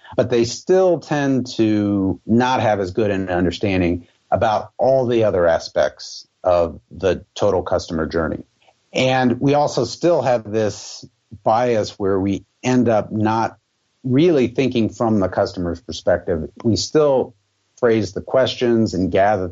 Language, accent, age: English, American, 50-69